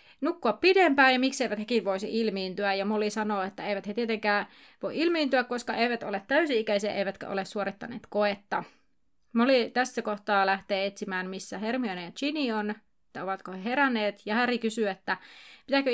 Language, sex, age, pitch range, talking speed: Finnish, female, 30-49, 205-245 Hz, 160 wpm